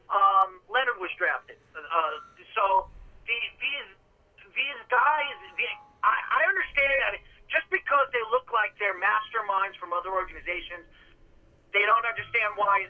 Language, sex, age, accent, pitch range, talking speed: English, male, 40-59, American, 190-240 Hz, 135 wpm